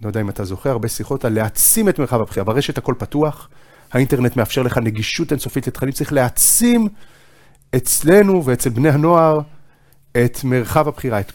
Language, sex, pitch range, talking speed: Hebrew, male, 120-150 Hz, 165 wpm